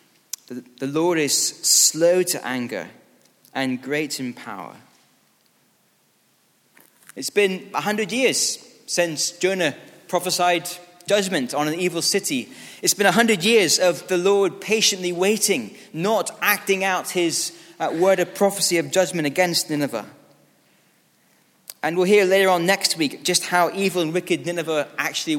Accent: British